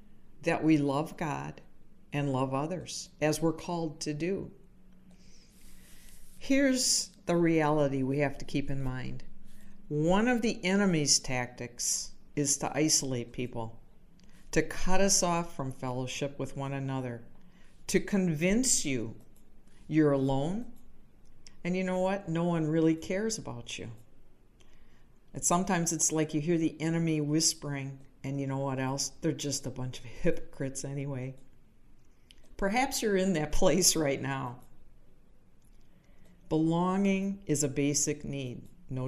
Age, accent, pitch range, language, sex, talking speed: 50-69, American, 130-175 Hz, English, female, 135 wpm